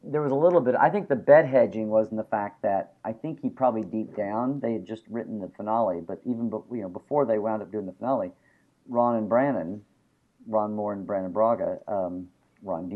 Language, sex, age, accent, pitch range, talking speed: English, male, 50-69, American, 100-125 Hz, 225 wpm